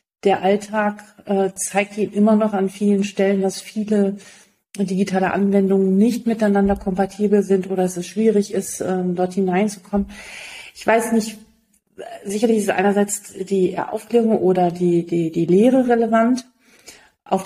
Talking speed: 130 wpm